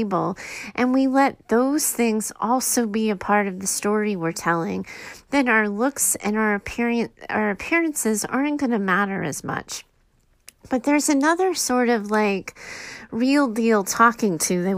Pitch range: 195-250 Hz